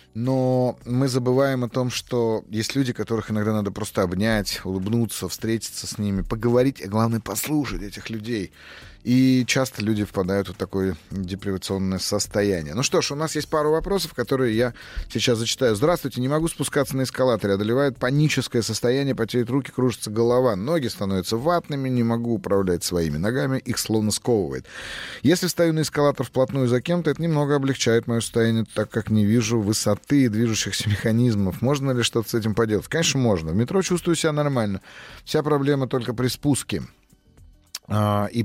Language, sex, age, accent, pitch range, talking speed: Russian, male, 30-49, native, 110-140 Hz, 165 wpm